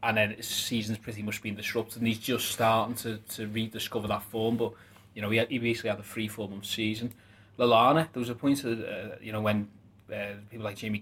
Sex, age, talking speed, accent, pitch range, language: male, 20-39, 230 wpm, British, 105-115 Hz, English